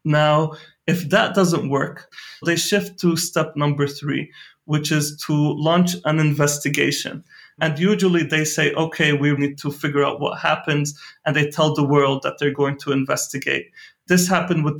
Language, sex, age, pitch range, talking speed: English, male, 30-49, 140-160 Hz, 170 wpm